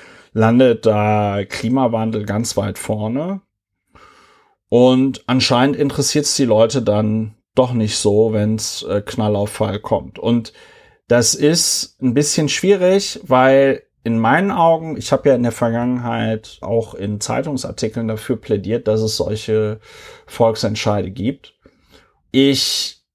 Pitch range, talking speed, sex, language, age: 110-145 Hz, 120 wpm, male, German, 30-49